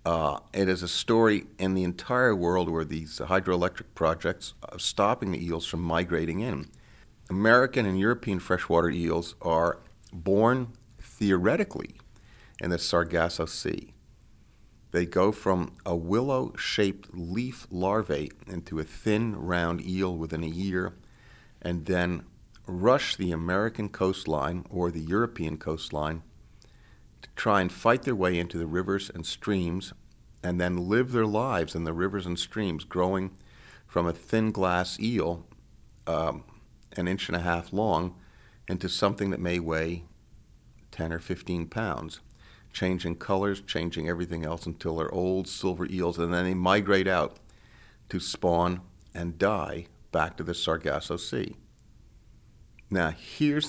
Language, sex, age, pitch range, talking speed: English, male, 50-69, 85-100 Hz, 140 wpm